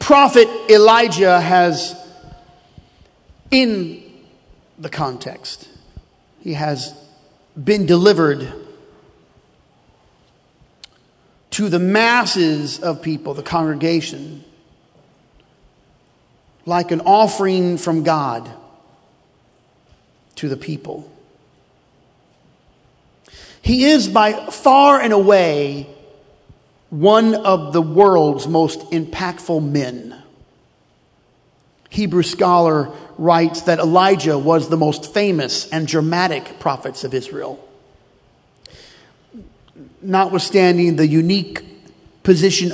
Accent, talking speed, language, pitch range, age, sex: American, 80 wpm, English, 150-195 Hz, 40-59, male